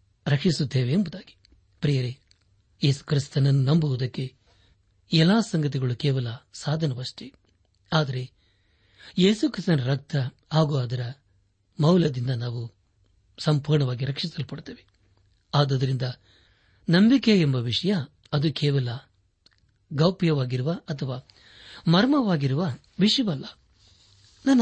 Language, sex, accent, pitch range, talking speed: Kannada, male, native, 100-155 Hz, 70 wpm